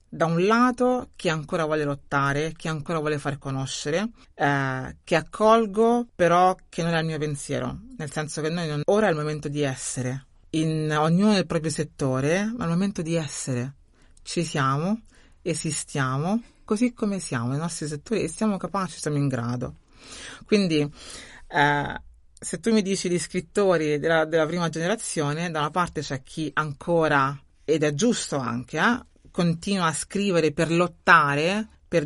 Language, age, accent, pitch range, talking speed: Italian, 30-49, native, 150-195 Hz, 165 wpm